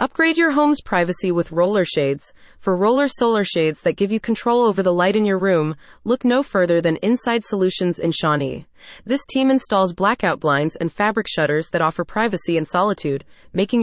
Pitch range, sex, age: 170-235 Hz, female, 20-39